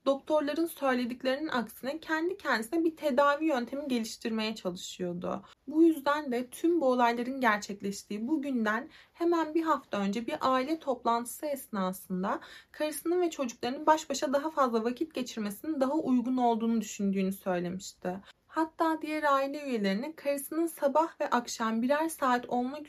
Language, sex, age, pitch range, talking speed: Turkish, female, 30-49, 230-310 Hz, 135 wpm